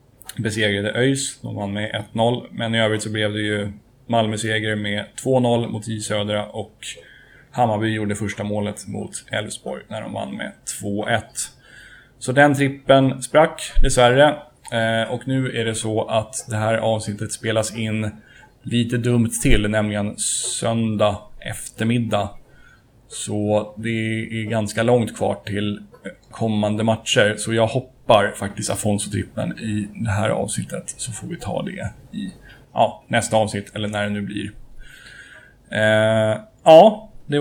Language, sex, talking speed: Swedish, male, 145 wpm